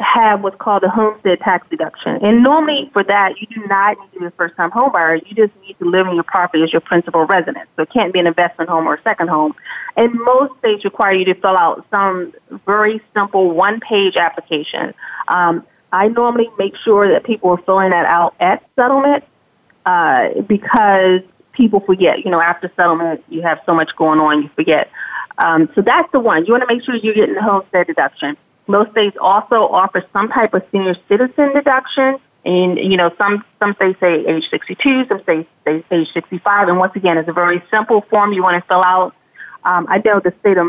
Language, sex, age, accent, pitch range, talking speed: English, female, 30-49, American, 175-220 Hz, 210 wpm